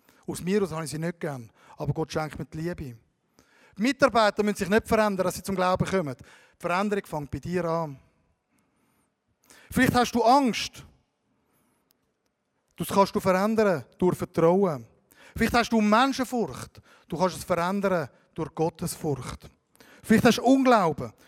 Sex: male